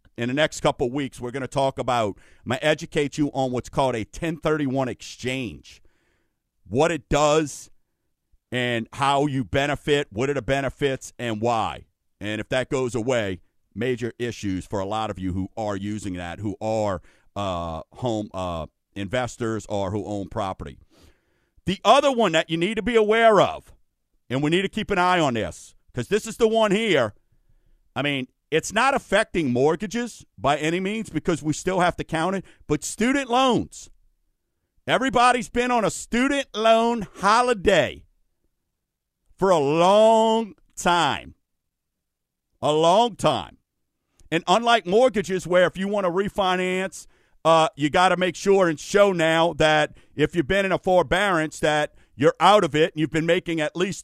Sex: male